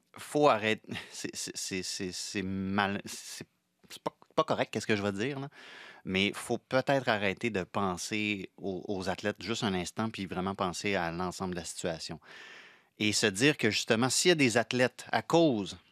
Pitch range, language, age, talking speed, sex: 100-125 Hz, French, 30-49, 190 wpm, male